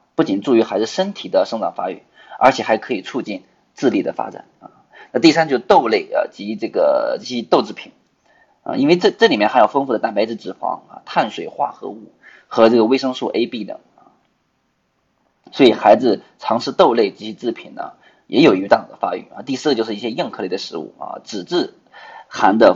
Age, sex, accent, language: 20-39, male, native, Chinese